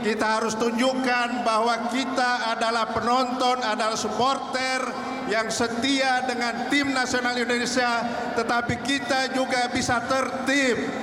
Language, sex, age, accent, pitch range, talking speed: Indonesian, male, 50-69, native, 205-240 Hz, 110 wpm